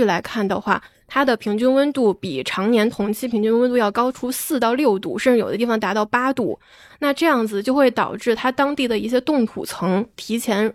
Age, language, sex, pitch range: 20-39, Chinese, female, 210-255 Hz